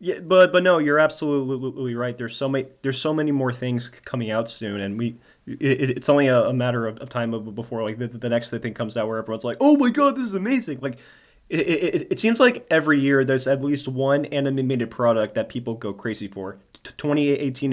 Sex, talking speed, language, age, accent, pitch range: male, 215 wpm, English, 20-39, American, 120-150 Hz